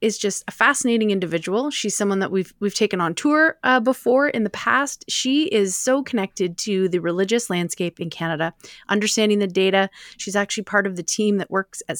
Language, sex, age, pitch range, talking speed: English, female, 30-49, 180-215 Hz, 200 wpm